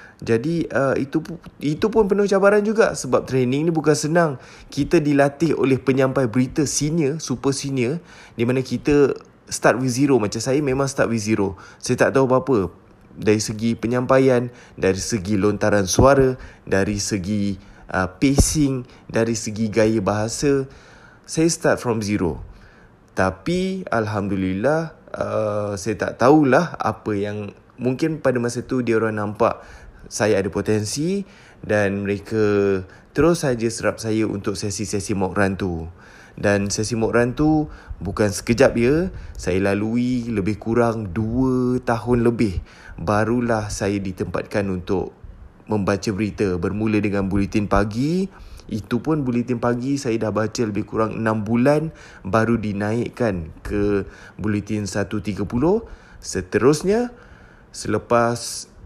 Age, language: 20-39, Malay